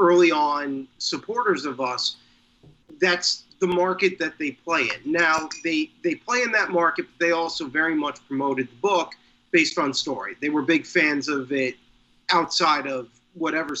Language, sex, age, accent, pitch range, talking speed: English, male, 40-59, American, 140-230 Hz, 170 wpm